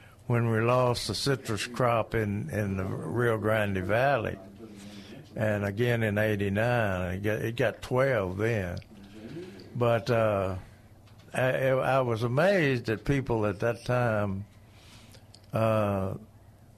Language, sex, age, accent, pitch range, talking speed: English, male, 60-79, American, 105-125 Hz, 120 wpm